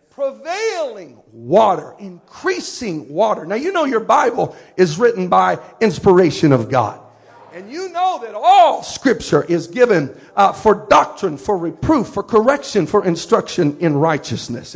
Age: 50-69